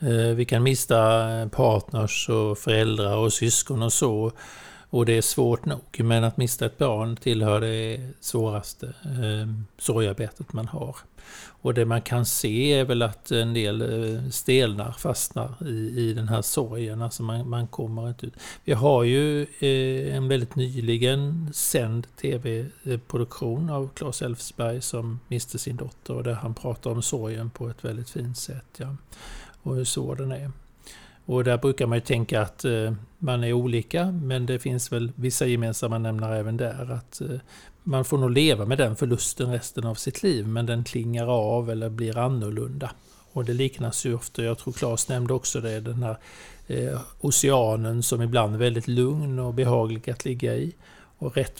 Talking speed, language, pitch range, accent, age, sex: 175 wpm, Swedish, 115-130 Hz, native, 50-69, male